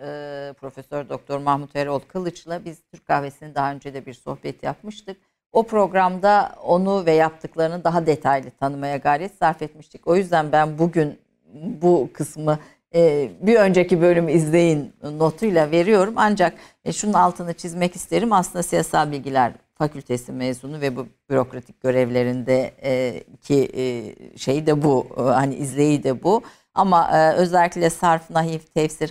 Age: 60-79